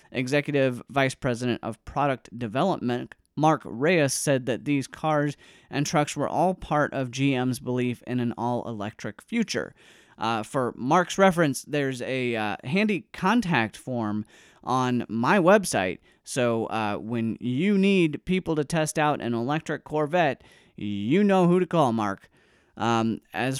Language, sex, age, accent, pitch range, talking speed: English, male, 30-49, American, 120-160 Hz, 145 wpm